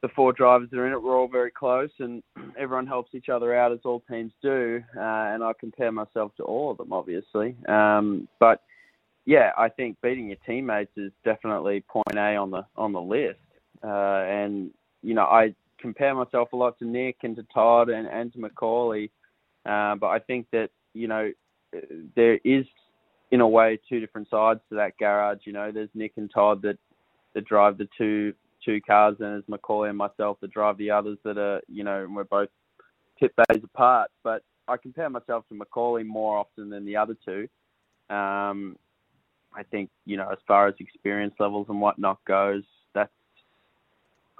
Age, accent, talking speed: 20-39, Australian, 190 wpm